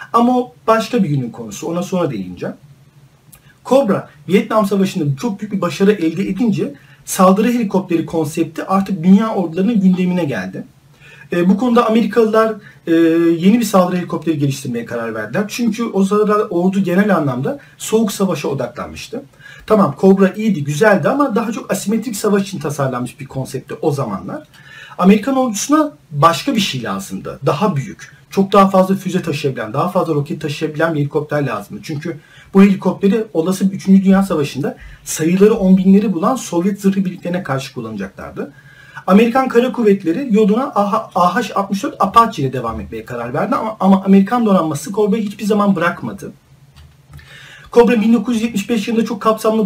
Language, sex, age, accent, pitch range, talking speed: Turkish, male, 40-59, native, 155-210 Hz, 145 wpm